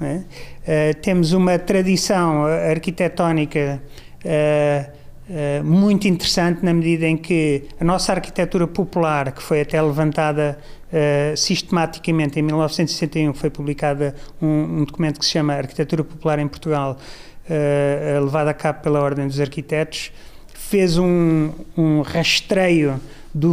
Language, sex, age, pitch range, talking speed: Portuguese, male, 30-49, 155-180 Hz, 130 wpm